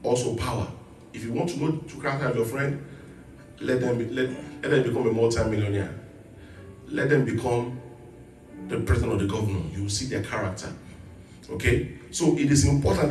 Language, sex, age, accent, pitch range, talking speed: English, male, 40-59, Nigerian, 100-140 Hz, 180 wpm